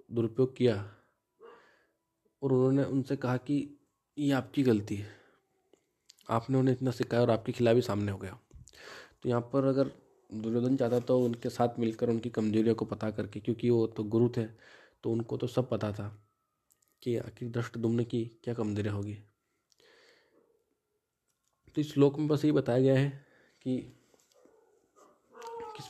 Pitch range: 115-135 Hz